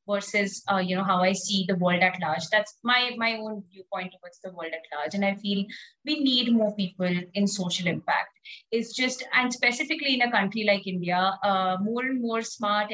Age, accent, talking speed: 20-39, Indian, 210 wpm